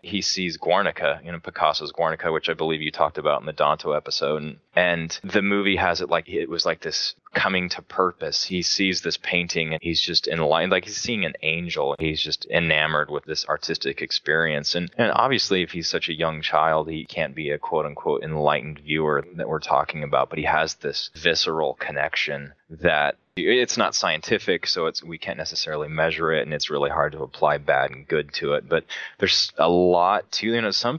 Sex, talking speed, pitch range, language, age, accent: male, 210 wpm, 80-95 Hz, English, 20-39, American